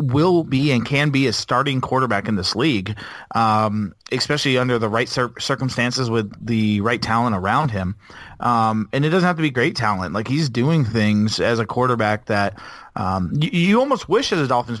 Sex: male